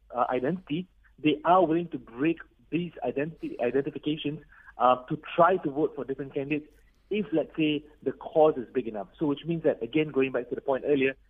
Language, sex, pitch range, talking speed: English, male, 135-165 Hz, 195 wpm